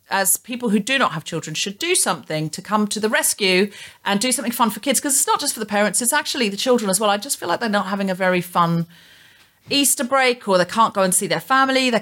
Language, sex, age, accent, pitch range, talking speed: English, female, 40-59, British, 165-220 Hz, 275 wpm